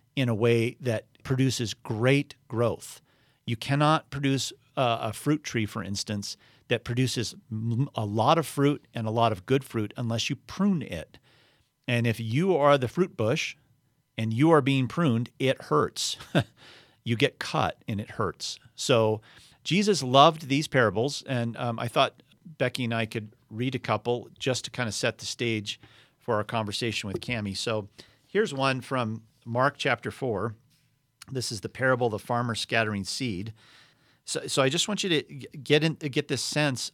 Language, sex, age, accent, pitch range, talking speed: English, male, 40-59, American, 115-140 Hz, 175 wpm